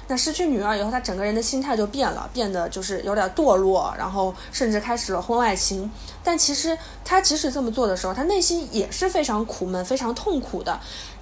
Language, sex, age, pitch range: Chinese, female, 20-39, 210-295 Hz